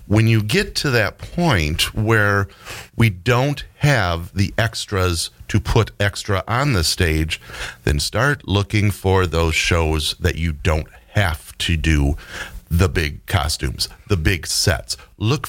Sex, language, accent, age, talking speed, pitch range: male, English, American, 40-59, 145 wpm, 85-110 Hz